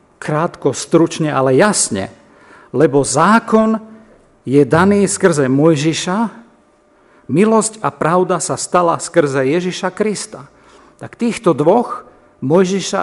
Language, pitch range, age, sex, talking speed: Slovak, 145-180 Hz, 50-69, male, 100 wpm